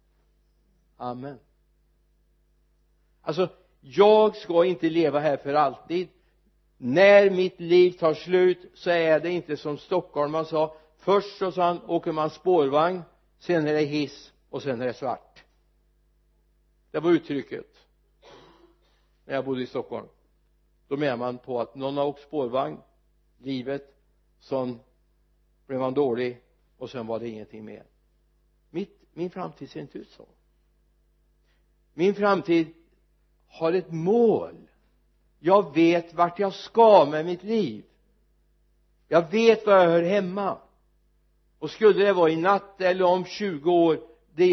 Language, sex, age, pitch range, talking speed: Swedish, male, 60-79, 135-180 Hz, 135 wpm